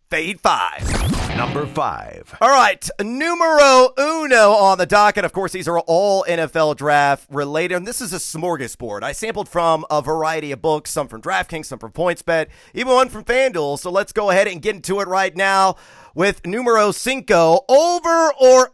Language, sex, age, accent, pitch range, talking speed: English, male, 30-49, American, 160-215 Hz, 185 wpm